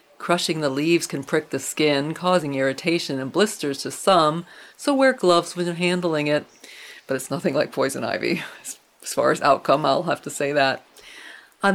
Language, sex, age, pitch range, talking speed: English, female, 40-59, 150-180 Hz, 185 wpm